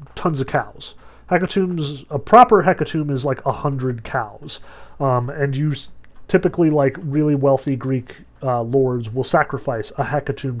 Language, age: English, 30-49